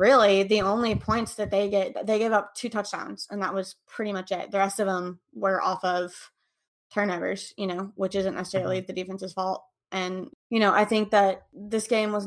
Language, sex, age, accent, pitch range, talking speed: English, female, 20-39, American, 185-210 Hz, 210 wpm